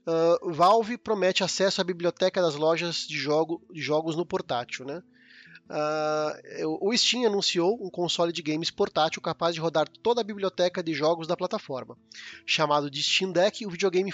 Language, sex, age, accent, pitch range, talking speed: Portuguese, male, 20-39, Brazilian, 160-195 Hz, 155 wpm